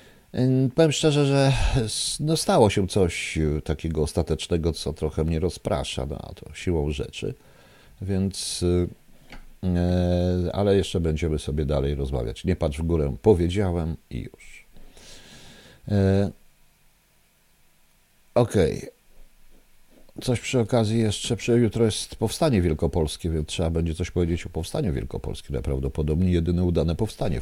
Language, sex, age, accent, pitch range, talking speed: Polish, male, 50-69, native, 75-100 Hz, 125 wpm